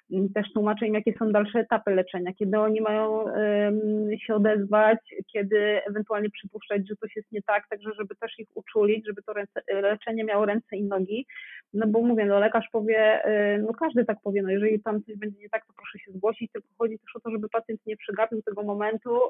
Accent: native